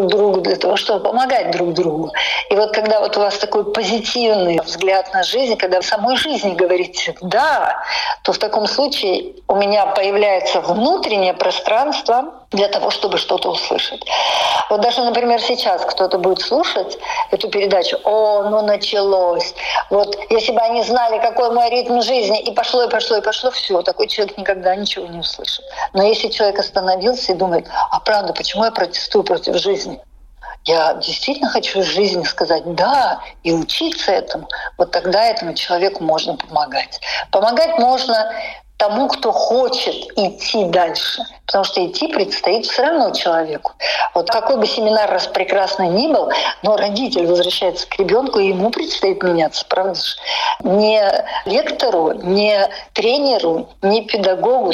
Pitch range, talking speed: 185-240 Hz, 155 wpm